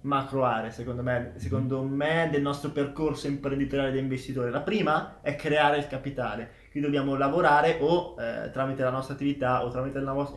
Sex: male